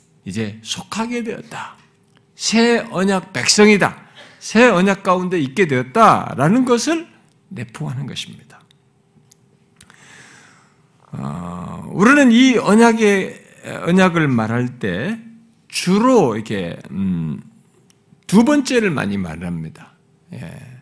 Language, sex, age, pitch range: Korean, male, 50-69, 130-215 Hz